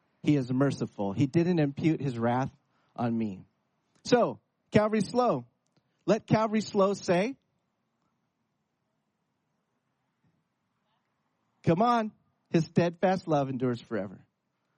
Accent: American